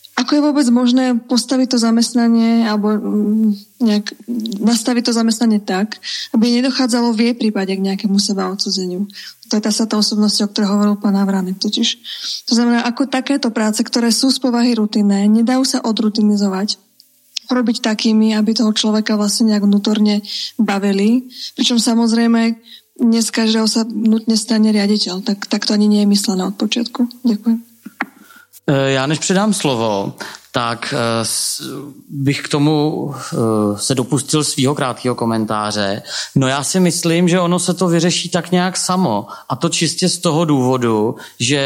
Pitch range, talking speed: 150-225 Hz, 145 wpm